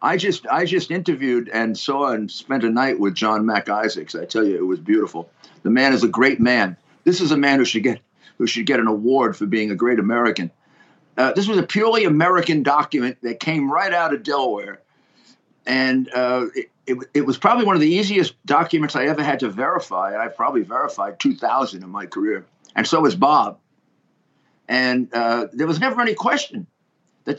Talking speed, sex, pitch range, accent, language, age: 205 wpm, male, 125-185 Hz, American, English, 50-69